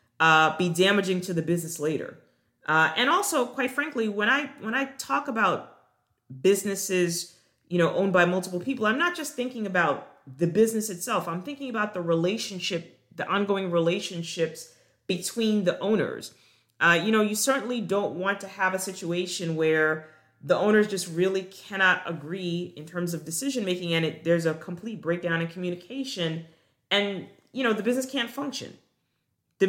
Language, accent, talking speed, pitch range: English, American, 165 wpm, 165-210 Hz